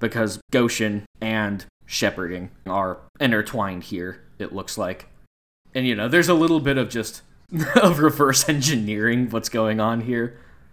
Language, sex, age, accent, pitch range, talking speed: English, male, 20-39, American, 100-140 Hz, 145 wpm